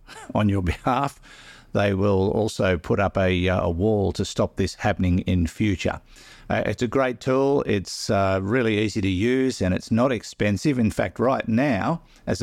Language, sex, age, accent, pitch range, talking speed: English, male, 50-69, Australian, 90-115 Hz, 185 wpm